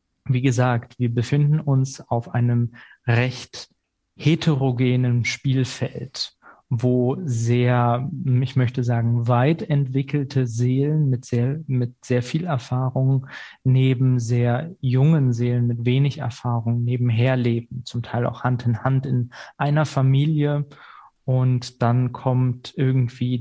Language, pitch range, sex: German, 120-135 Hz, male